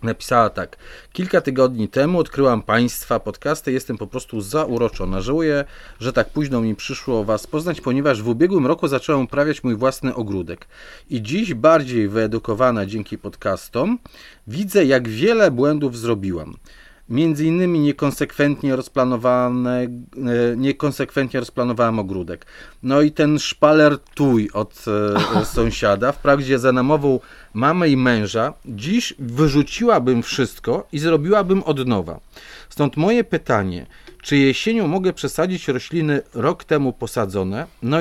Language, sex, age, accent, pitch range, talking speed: Polish, male, 30-49, native, 120-155 Hz, 125 wpm